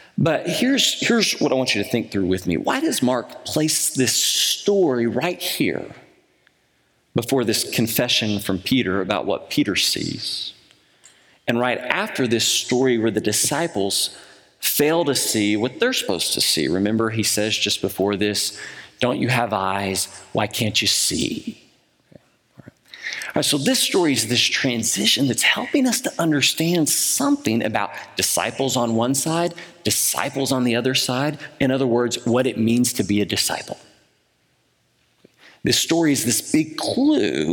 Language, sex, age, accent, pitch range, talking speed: English, male, 40-59, American, 110-175 Hz, 155 wpm